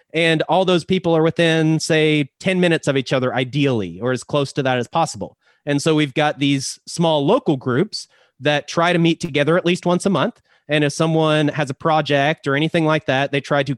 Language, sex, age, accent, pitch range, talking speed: English, male, 30-49, American, 145-170 Hz, 220 wpm